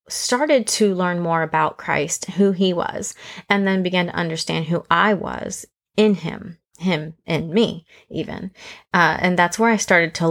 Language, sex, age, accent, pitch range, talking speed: English, female, 30-49, American, 170-205 Hz, 175 wpm